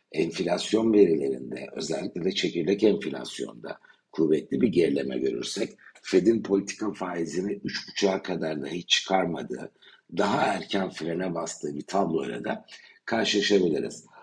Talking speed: 110 wpm